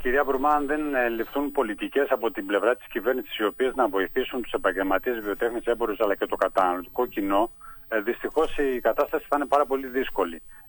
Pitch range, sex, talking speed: 105-130 Hz, male, 180 wpm